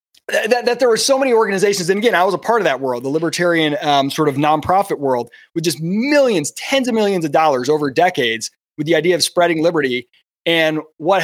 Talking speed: 220 wpm